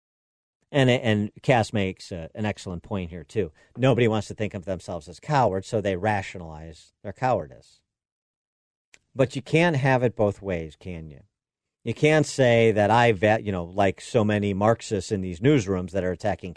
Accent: American